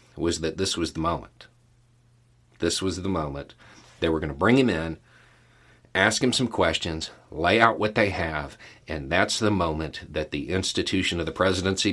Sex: male